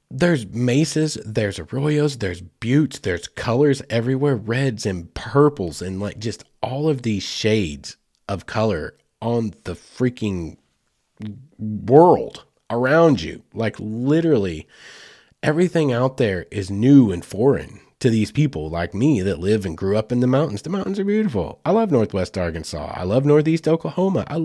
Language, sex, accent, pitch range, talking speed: English, male, American, 95-140 Hz, 150 wpm